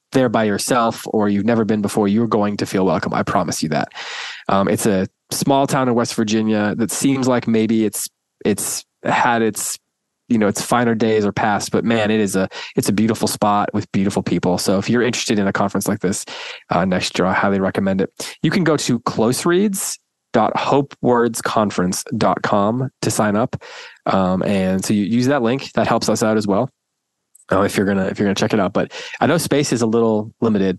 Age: 20-39